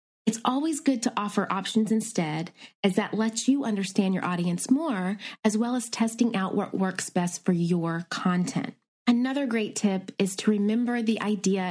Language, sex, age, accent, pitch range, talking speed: English, female, 20-39, American, 195-255 Hz, 175 wpm